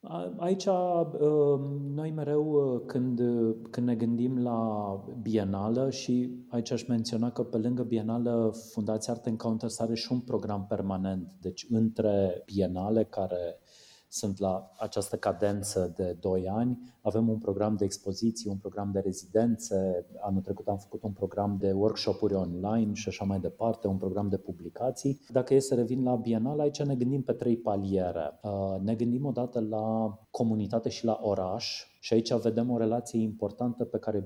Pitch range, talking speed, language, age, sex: 100-120 Hz, 160 wpm, Romanian, 30-49, male